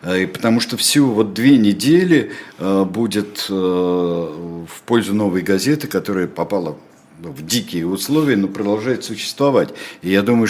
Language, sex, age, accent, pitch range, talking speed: Russian, male, 60-79, native, 90-115 Hz, 120 wpm